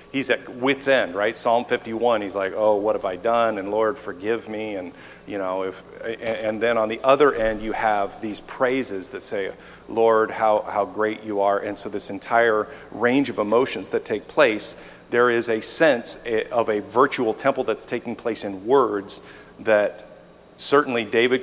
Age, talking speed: 40-59, 190 wpm